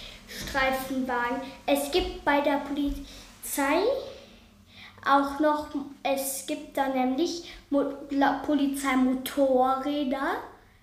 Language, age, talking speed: German, 10-29, 70 wpm